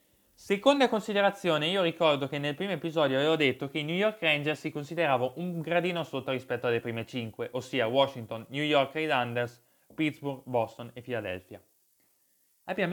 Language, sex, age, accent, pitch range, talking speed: Italian, male, 20-39, native, 125-170 Hz, 160 wpm